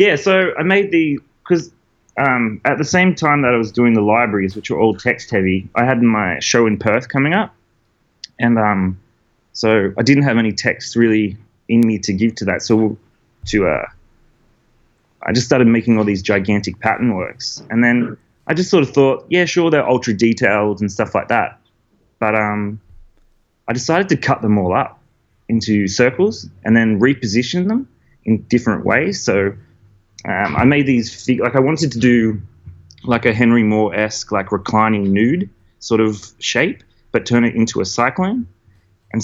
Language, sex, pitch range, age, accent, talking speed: English, male, 105-120 Hz, 20-39, Australian, 180 wpm